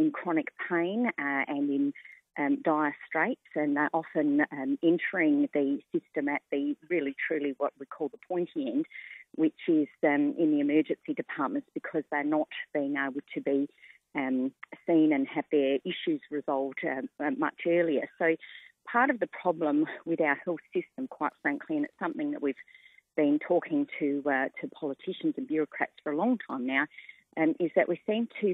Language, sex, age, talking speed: English, female, 40-59, 180 wpm